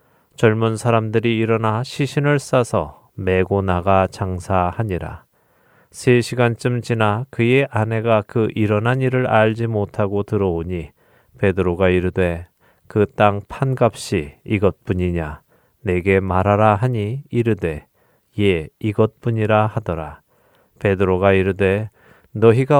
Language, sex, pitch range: Korean, male, 95-120 Hz